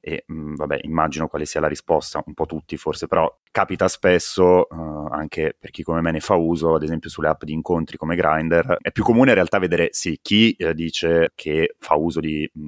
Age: 30-49